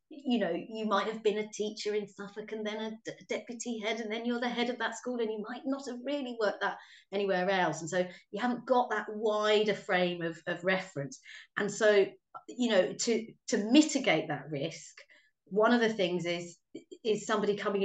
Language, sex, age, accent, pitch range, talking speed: English, female, 30-49, British, 190-245 Hz, 205 wpm